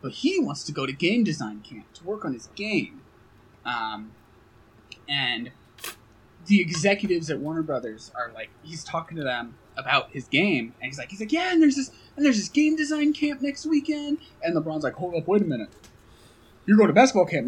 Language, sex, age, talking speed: English, male, 20-39, 205 wpm